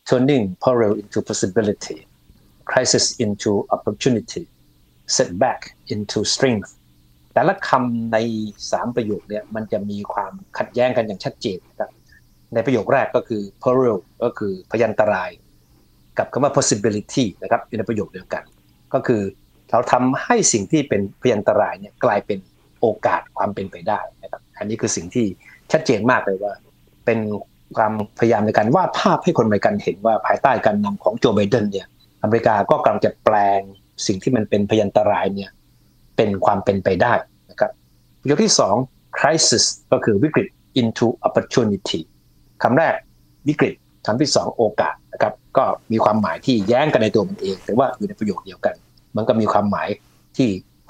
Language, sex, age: Thai, male, 60-79